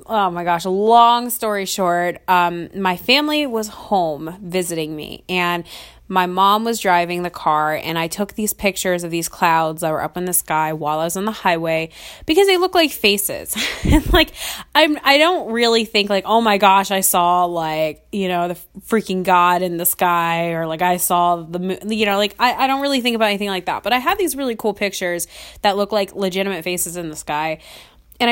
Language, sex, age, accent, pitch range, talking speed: English, female, 20-39, American, 175-225 Hz, 210 wpm